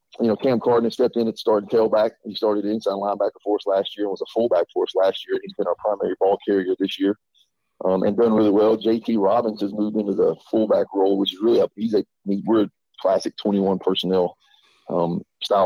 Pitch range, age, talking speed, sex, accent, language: 95-120 Hz, 40-59, 230 wpm, male, American, English